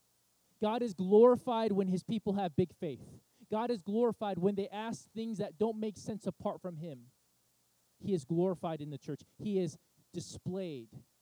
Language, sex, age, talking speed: English, male, 20-39, 170 wpm